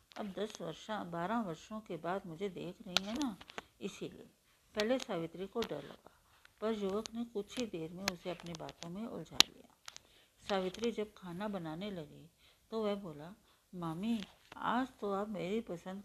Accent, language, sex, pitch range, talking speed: native, Hindi, female, 175-215 Hz, 170 wpm